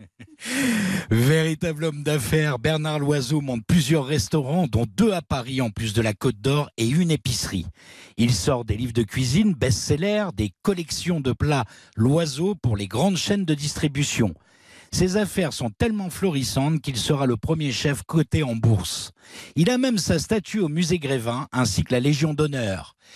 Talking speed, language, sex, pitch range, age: 170 wpm, French, male, 115-160 Hz, 50-69